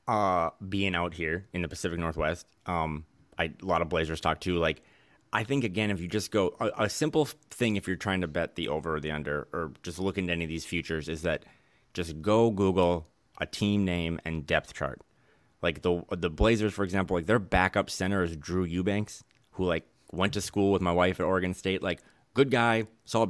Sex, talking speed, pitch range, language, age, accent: male, 220 wpm, 85-110 Hz, English, 30-49, American